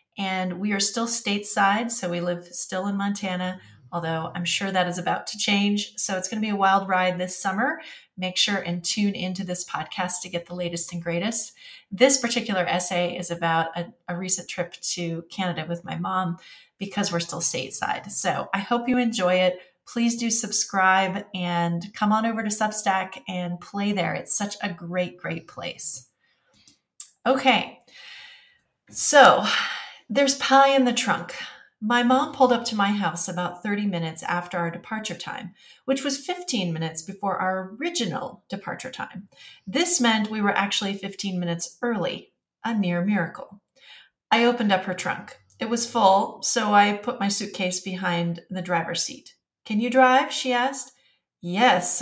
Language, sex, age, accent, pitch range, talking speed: English, female, 30-49, American, 180-230 Hz, 170 wpm